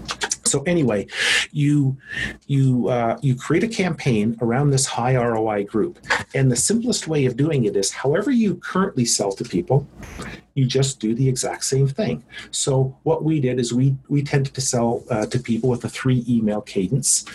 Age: 40-59